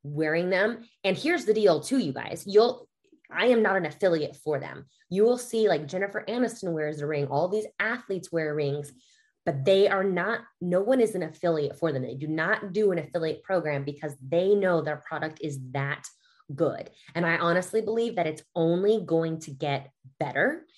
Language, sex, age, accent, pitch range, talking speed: English, female, 20-39, American, 150-200 Hz, 195 wpm